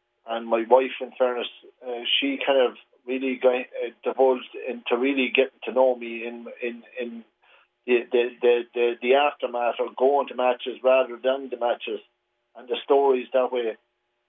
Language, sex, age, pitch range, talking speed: English, male, 40-59, 115-135 Hz, 170 wpm